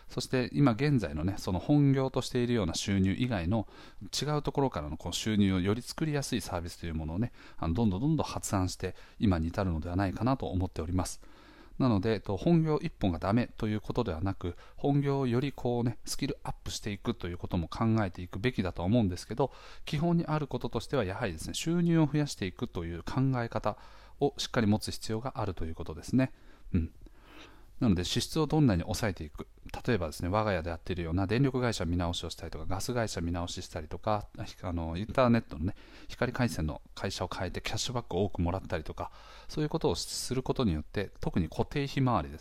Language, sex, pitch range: Japanese, male, 90-125 Hz